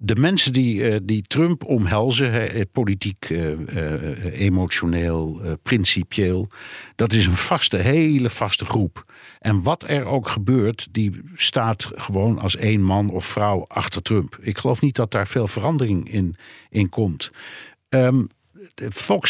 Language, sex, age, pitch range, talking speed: Dutch, male, 60-79, 95-125 Hz, 130 wpm